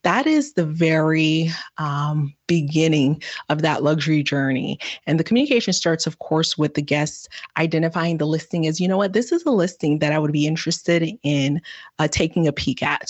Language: English